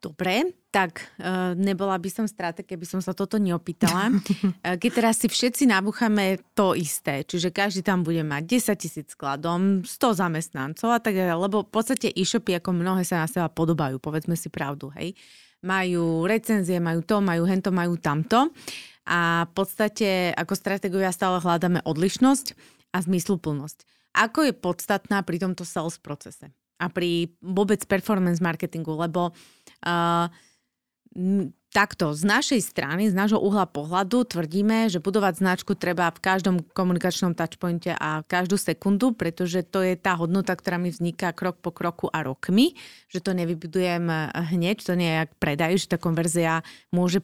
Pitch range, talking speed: 170-200 Hz, 155 wpm